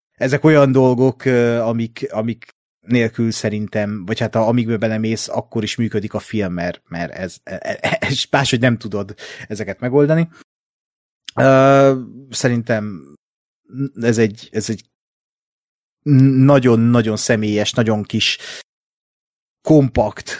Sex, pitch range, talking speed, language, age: male, 105-130 Hz, 115 wpm, Hungarian, 30-49